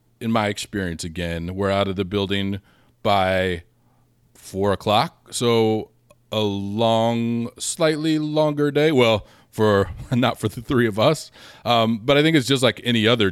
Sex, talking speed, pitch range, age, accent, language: male, 160 wpm, 95-115 Hz, 30-49, American, English